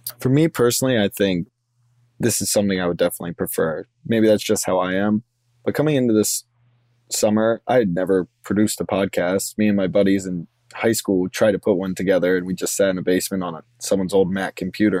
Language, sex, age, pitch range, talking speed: English, male, 20-39, 100-120 Hz, 210 wpm